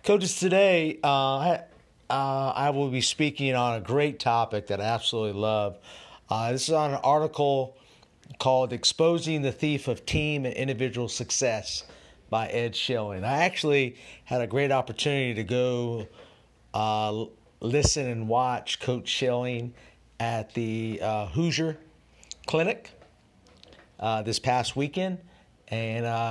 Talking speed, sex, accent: 130 wpm, male, American